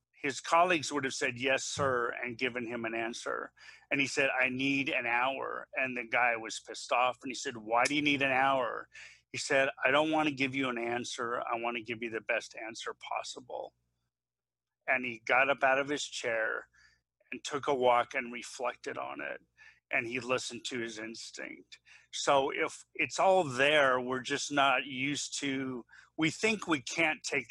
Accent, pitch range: American, 120-150 Hz